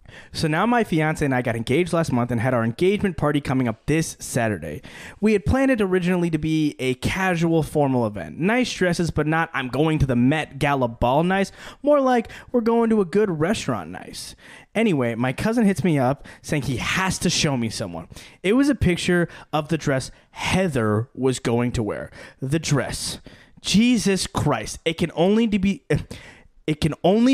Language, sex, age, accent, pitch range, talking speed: English, male, 20-39, American, 130-195 Hz, 180 wpm